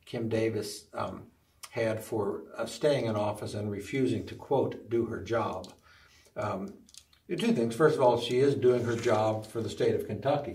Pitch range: 105-130 Hz